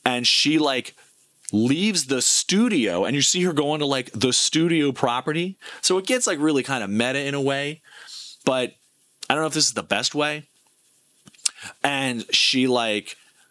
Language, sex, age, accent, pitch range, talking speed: English, male, 30-49, American, 105-140 Hz, 180 wpm